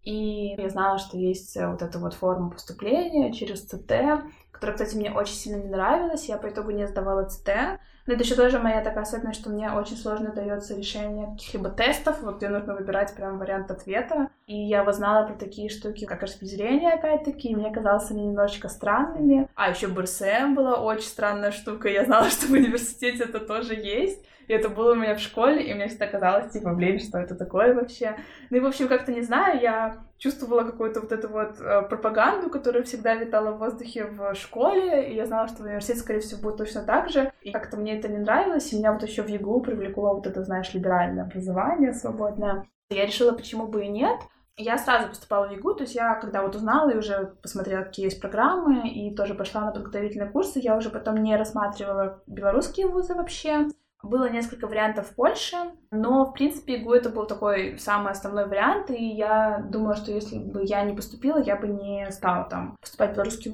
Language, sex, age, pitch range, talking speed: Russian, female, 20-39, 200-245 Hz, 200 wpm